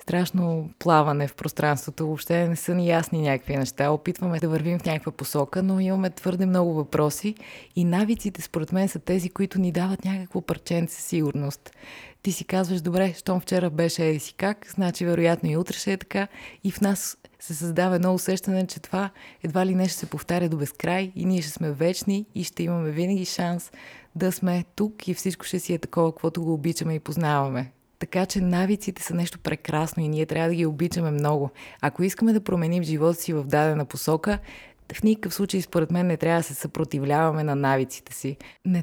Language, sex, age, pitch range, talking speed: Bulgarian, female, 20-39, 155-185 Hz, 195 wpm